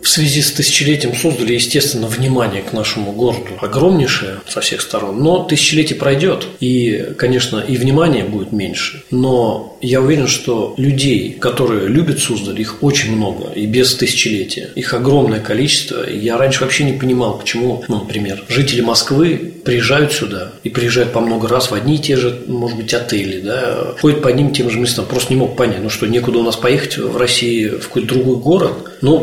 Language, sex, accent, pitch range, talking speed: Russian, male, native, 115-140 Hz, 185 wpm